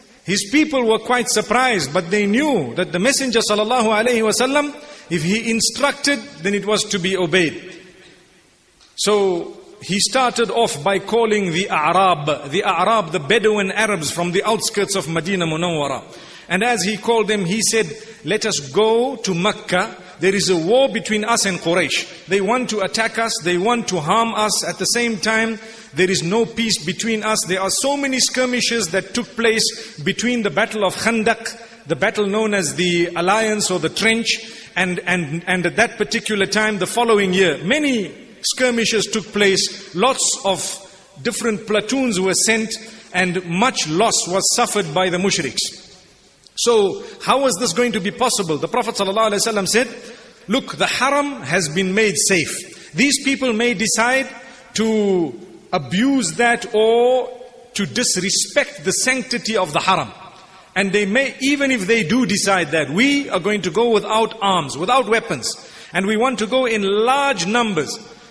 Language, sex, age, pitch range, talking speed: English, male, 50-69, 190-235 Hz, 170 wpm